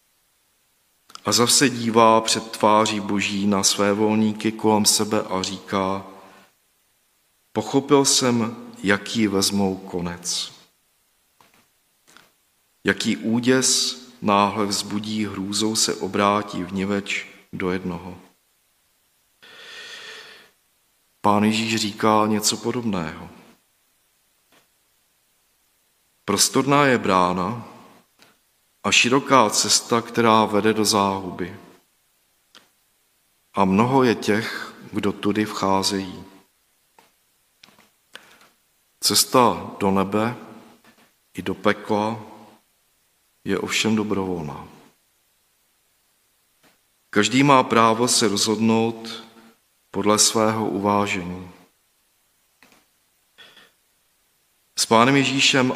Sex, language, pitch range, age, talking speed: male, Czech, 100-115 Hz, 40-59, 75 wpm